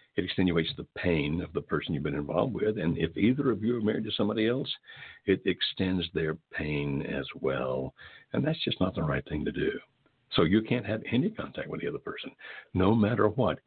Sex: male